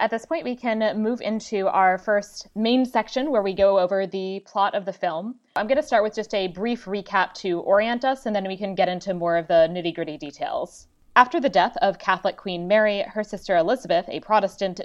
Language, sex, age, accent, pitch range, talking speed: English, female, 20-39, American, 175-220 Hz, 220 wpm